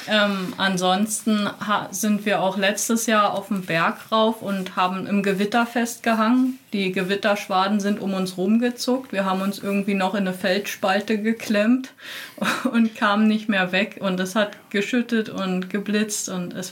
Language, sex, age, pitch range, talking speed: German, female, 30-49, 190-220 Hz, 160 wpm